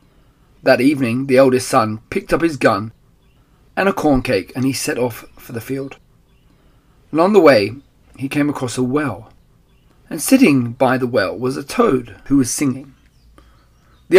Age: 30-49